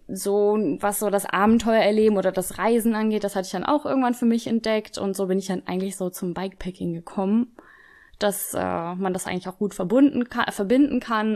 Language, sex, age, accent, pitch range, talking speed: German, female, 10-29, German, 180-210 Hz, 210 wpm